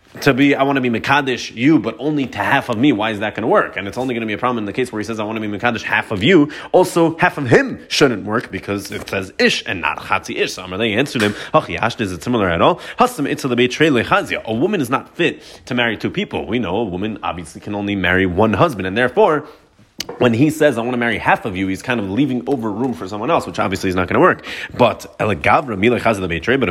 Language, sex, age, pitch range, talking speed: English, male, 20-39, 105-140 Hz, 260 wpm